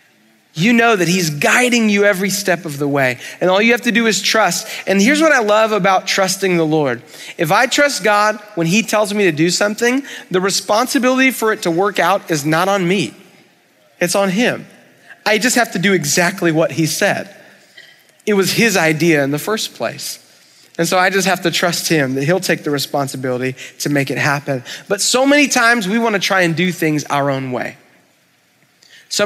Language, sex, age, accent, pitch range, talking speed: English, male, 30-49, American, 155-210 Hz, 205 wpm